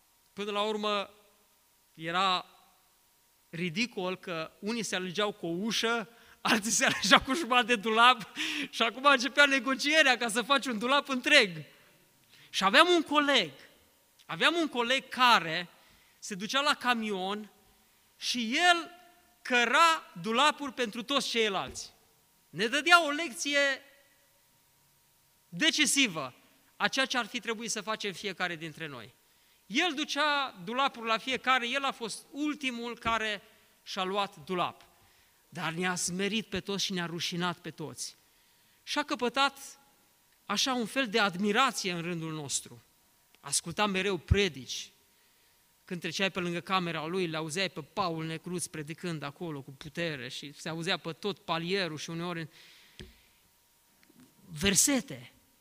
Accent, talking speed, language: native, 135 wpm, Romanian